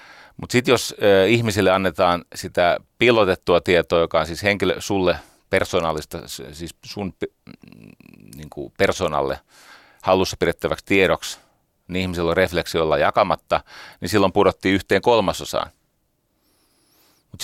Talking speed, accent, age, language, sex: 115 wpm, native, 30-49, Finnish, male